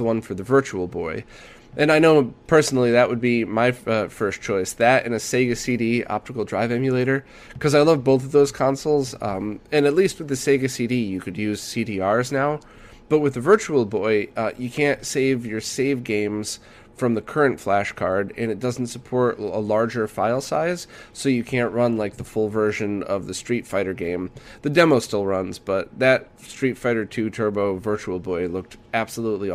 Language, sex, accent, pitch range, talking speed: English, male, American, 105-130 Hz, 195 wpm